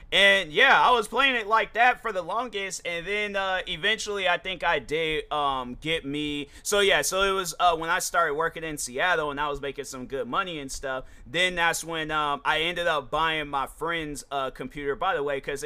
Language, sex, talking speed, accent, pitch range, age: English, male, 225 wpm, American, 130-165 Hz, 30-49